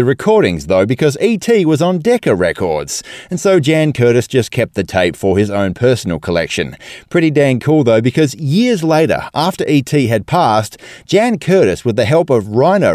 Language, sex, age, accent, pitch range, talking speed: English, male, 30-49, Australian, 105-155 Hz, 180 wpm